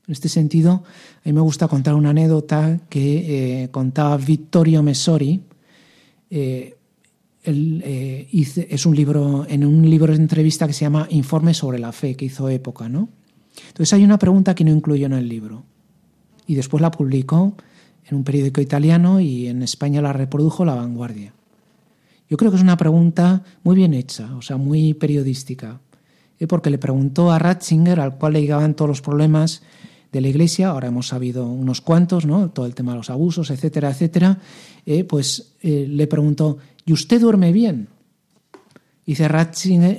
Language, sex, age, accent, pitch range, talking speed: Spanish, male, 40-59, Spanish, 140-175 Hz, 175 wpm